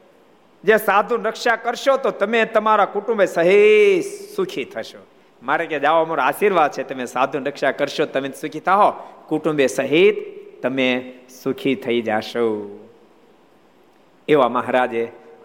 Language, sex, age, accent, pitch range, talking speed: Gujarati, male, 50-69, native, 125-200 Hz, 45 wpm